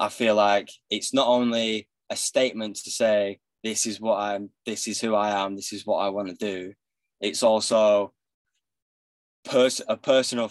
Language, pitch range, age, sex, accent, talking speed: English, 100-110 Hz, 10-29, male, British, 175 wpm